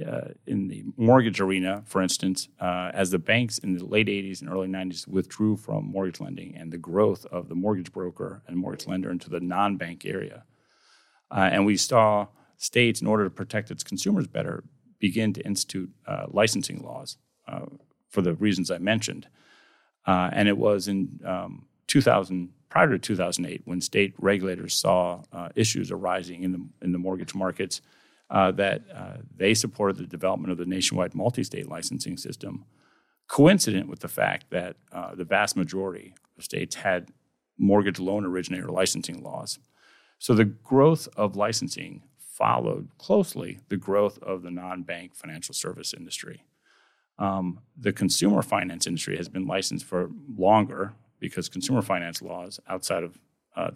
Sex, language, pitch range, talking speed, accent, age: male, English, 90-105 Hz, 160 wpm, American, 40-59